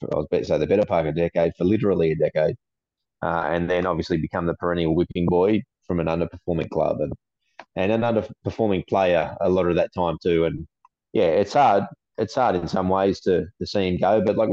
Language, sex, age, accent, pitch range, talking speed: English, male, 20-39, Australian, 85-100 Hz, 225 wpm